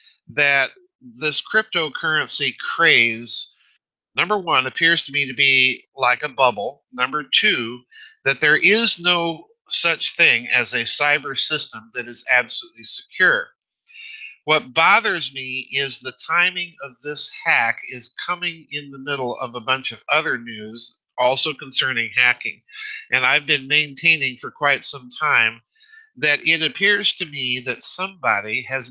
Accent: American